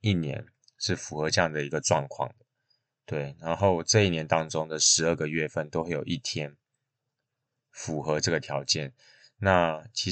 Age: 20-39